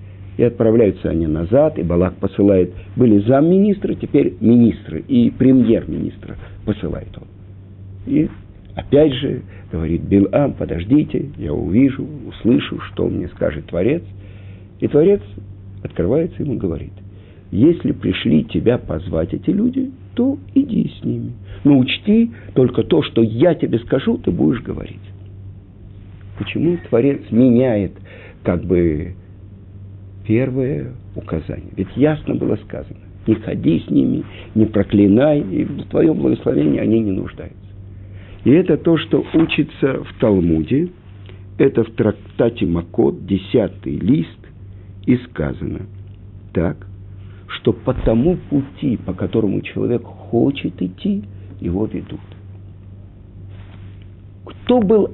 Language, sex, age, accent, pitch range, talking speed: Russian, male, 50-69, native, 95-125 Hz, 120 wpm